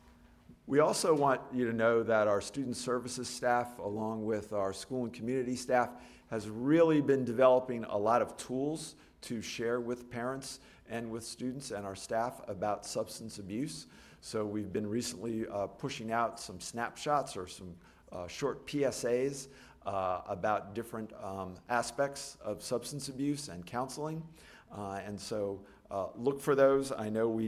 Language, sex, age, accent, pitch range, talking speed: English, male, 50-69, American, 100-125 Hz, 160 wpm